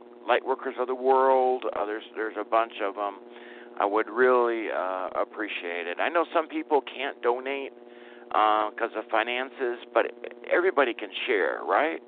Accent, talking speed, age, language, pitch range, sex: American, 160 wpm, 50-69, English, 110-125 Hz, male